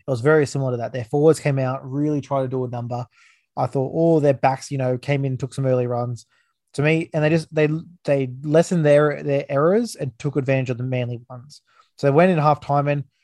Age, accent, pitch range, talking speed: 20-39, Australian, 125-150 Hz, 245 wpm